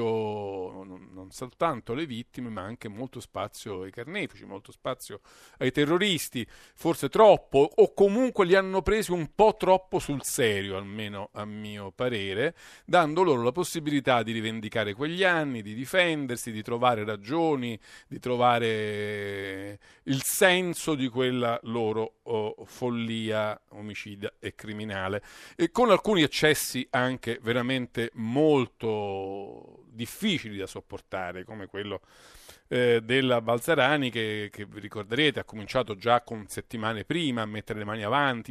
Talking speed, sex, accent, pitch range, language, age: 135 wpm, male, native, 105-135 Hz, Italian, 50-69